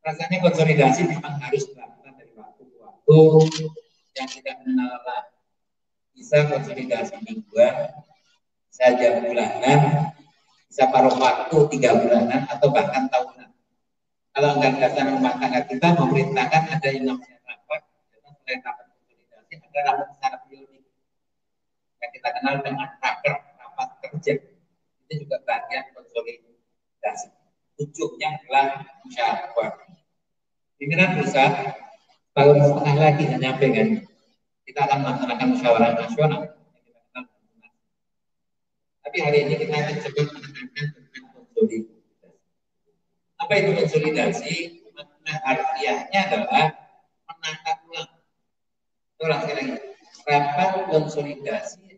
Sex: male